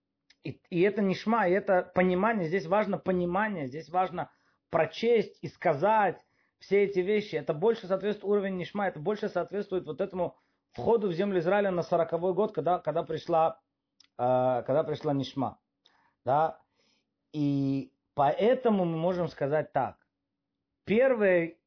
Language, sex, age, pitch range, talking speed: Russian, male, 30-49, 135-185 Hz, 140 wpm